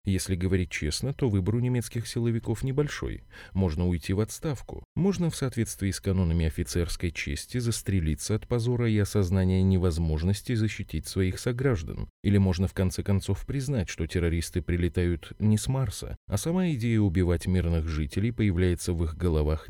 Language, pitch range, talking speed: Russian, 90-115 Hz, 155 wpm